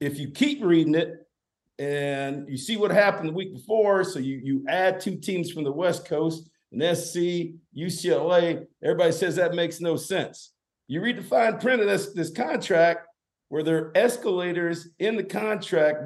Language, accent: English, American